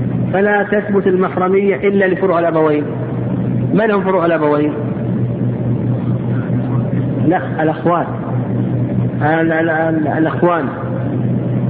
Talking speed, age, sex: 60 wpm, 50-69, male